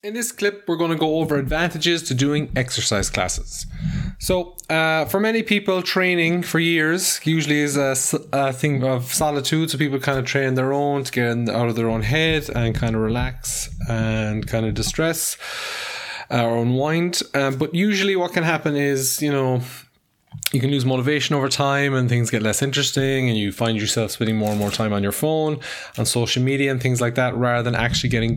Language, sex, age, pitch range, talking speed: English, male, 20-39, 120-155 Hz, 200 wpm